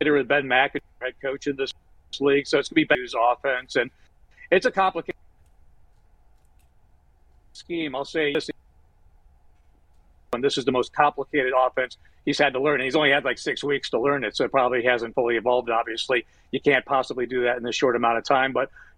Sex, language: male, English